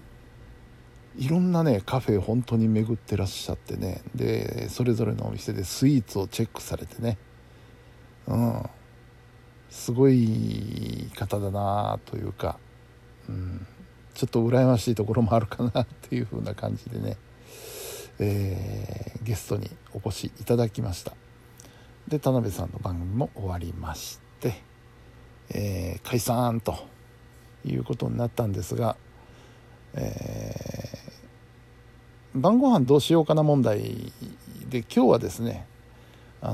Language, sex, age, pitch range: Japanese, male, 60-79, 110-125 Hz